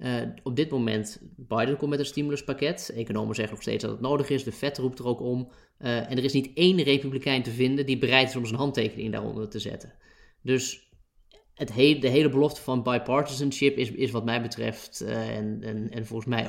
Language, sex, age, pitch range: Dutch, male, 20-39, 115-140 Hz